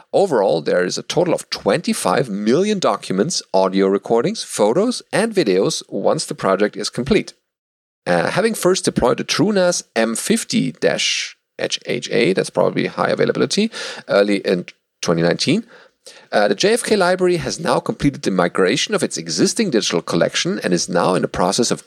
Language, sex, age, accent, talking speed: English, male, 40-59, German, 145 wpm